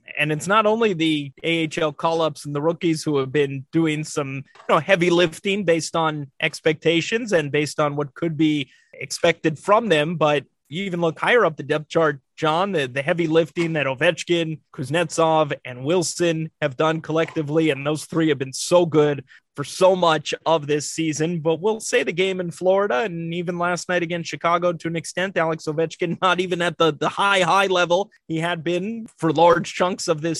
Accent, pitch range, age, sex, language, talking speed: American, 155-175 Hz, 20-39, male, English, 195 wpm